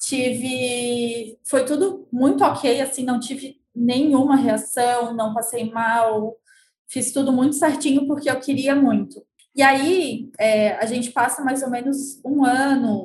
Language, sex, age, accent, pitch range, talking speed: Portuguese, female, 20-39, Brazilian, 245-290 Hz, 145 wpm